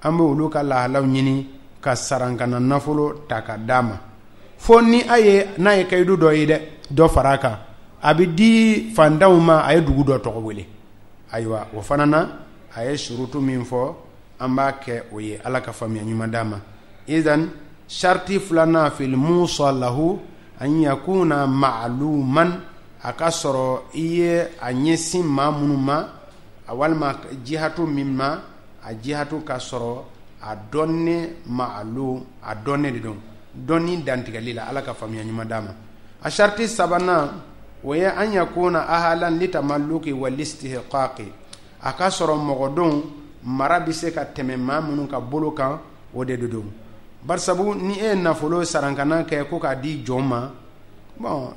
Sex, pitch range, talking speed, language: male, 120-160 Hz, 105 wpm, French